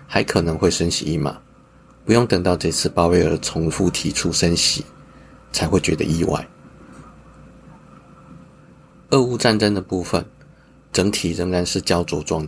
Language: Chinese